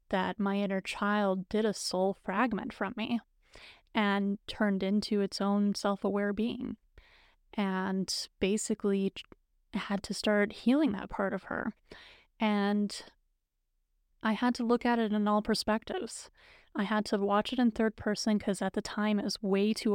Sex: female